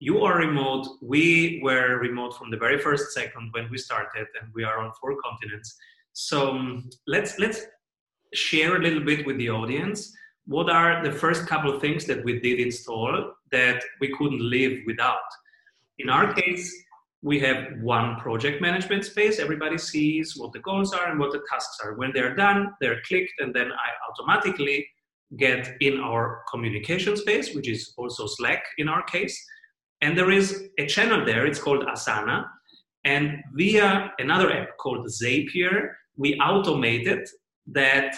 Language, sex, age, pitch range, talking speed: English, male, 30-49, 130-180 Hz, 165 wpm